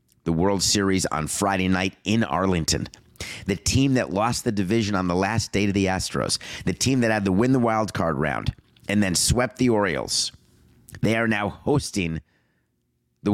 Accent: American